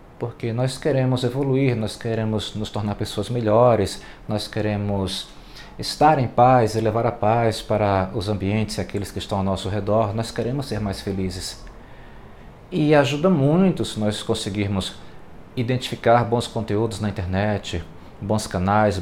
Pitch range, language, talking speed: 100-125 Hz, Portuguese, 150 wpm